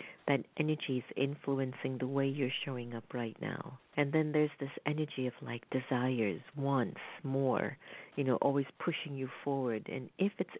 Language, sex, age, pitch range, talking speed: English, female, 50-69, 125-150 Hz, 170 wpm